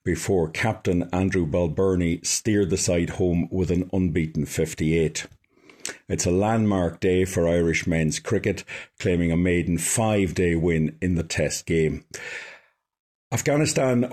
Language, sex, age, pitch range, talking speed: English, male, 50-69, 85-105 Hz, 125 wpm